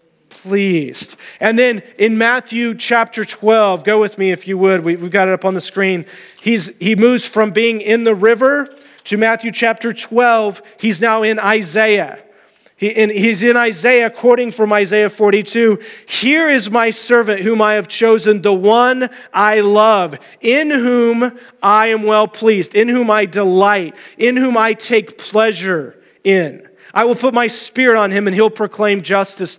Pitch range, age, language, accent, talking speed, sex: 190-225 Hz, 40-59, English, American, 170 wpm, male